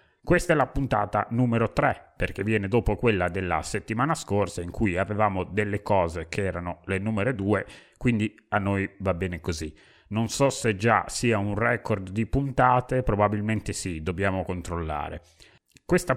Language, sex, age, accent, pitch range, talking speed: Italian, male, 30-49, native, 90-115 Hz, 160 wpm